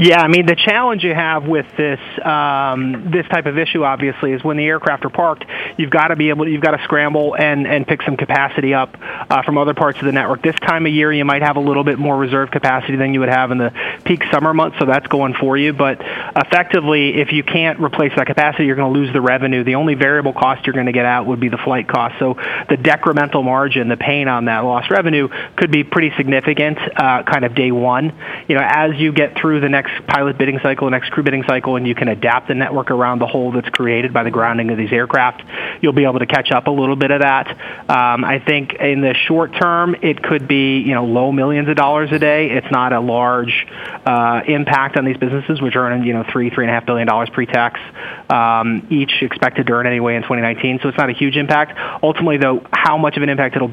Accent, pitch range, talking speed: American, 125-150 Hz, 245 wpm